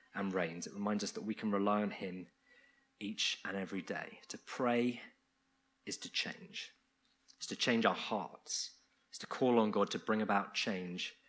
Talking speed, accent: 180 wpm, British